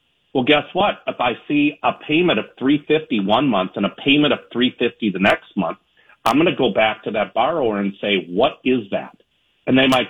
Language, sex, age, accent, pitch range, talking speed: English, male, 40-59, American, 100-145 Hz, 220 wpm